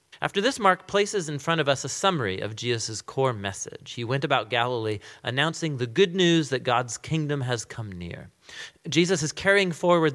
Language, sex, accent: English, male, American